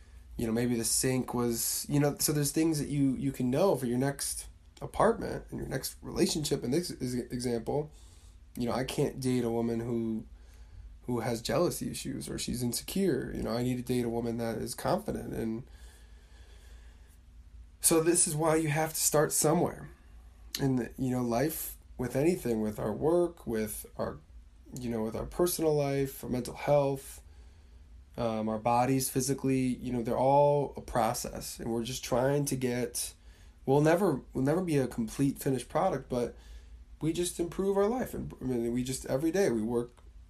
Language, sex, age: English, male, 20-39